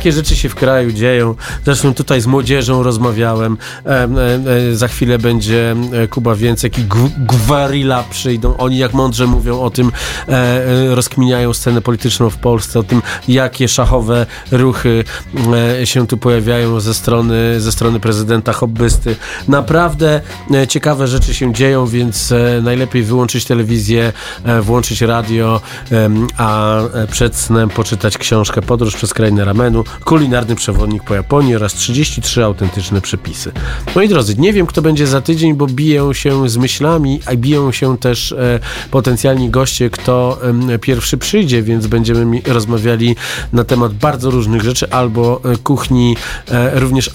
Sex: male